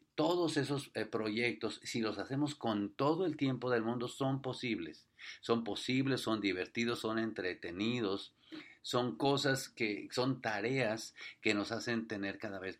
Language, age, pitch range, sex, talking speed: English, 50-69, 100-125 Hz, male, 145 wpm